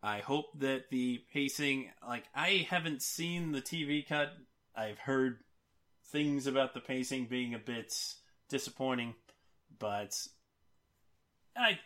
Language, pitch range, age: English, 110-140 Hz, 30-49